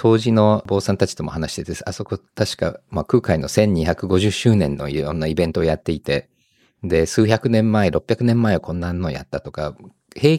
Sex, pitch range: male, 80-130 Hz